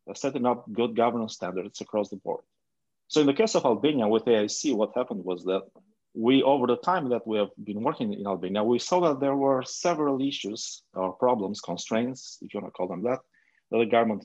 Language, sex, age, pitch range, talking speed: English, male, 30-49, 100-130 Hz, 215 wpm